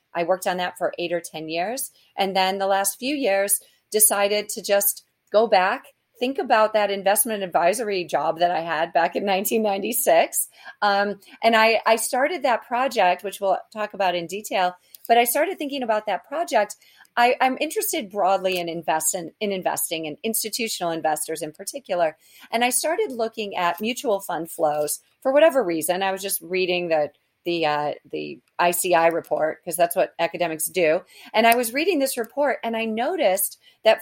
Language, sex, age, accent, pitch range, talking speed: English, female, 40-59, American, 180-235 Hz, 175 wpm